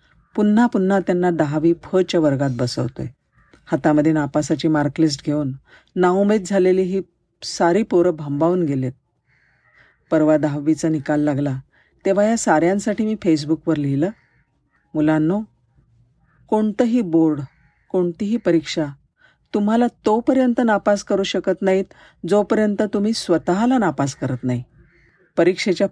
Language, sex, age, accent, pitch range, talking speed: Marathi, female, 50-69, native, 150-195 Hz, 105 wpm